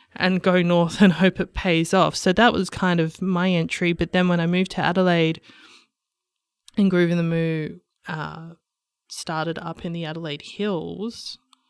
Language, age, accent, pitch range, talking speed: English, 20-39, Australian, 165-195 Hz, 175 wpm